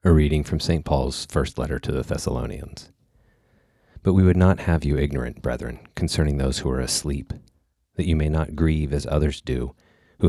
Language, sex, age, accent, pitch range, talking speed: English, male, 40-59, American, 75-90 Hz, 185 wpm